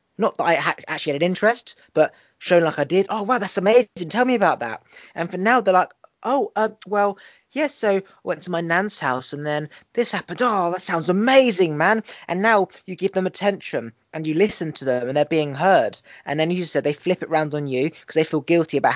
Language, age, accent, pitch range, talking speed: English, 20-39, British, 150-195 Hz, 245 wpm